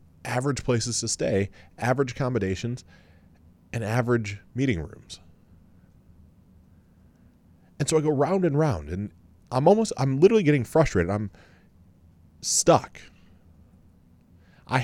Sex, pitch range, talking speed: male, 90-120 Hz, 110 wpm